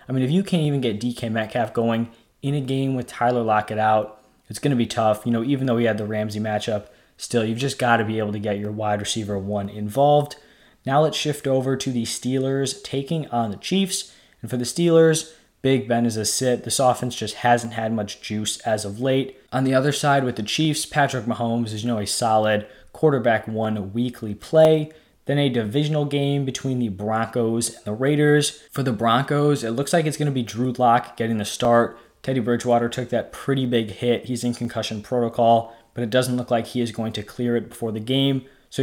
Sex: male